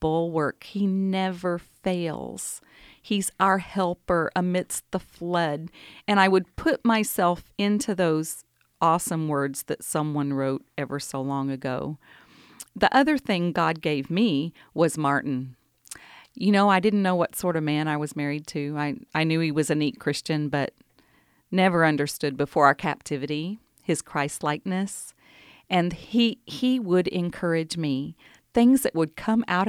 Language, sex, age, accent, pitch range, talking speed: English, female, 40-59, American, 150-190 Hz, 150 wpm